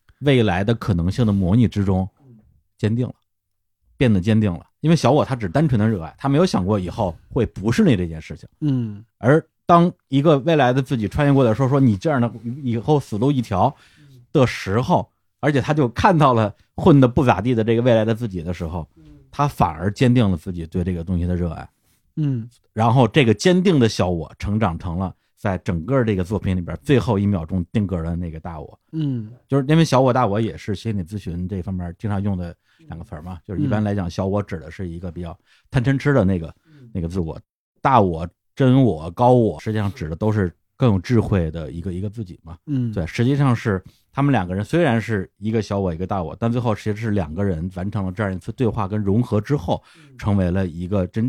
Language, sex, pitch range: Chinese, male, 95-125 Hz